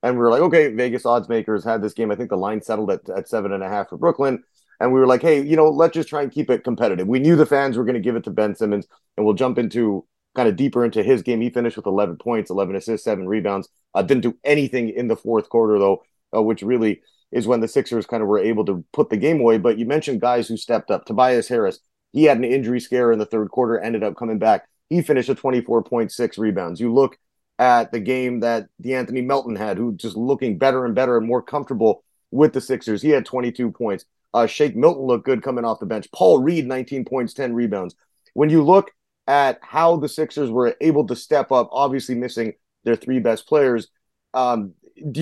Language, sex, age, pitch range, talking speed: English, male, 30-49, 115-140 Hz, 240 wpm